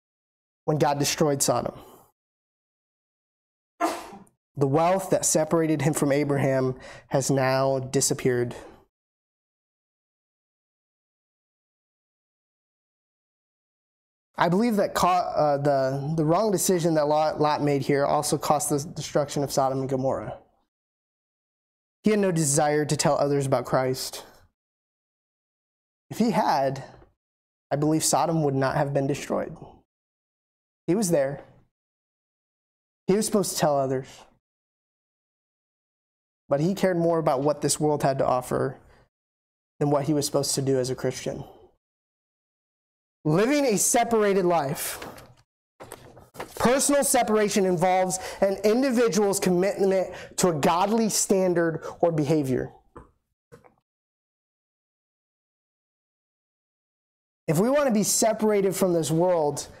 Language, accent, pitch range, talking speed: English, American, 140-190 Hz, 110 wpm